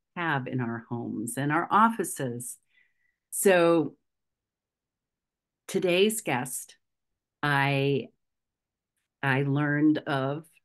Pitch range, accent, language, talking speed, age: 135-160 Hz, American, English, 80 wpm, 50-69